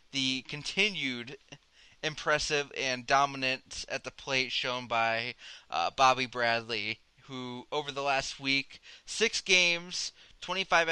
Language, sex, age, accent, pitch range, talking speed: English, male, 20-39, American, 125-150 Hz, 115 wpm